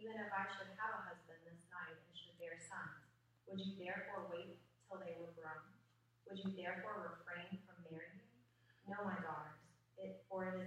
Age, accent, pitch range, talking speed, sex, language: 30-49, American, 160-195 Hz, 190 wpm, female, English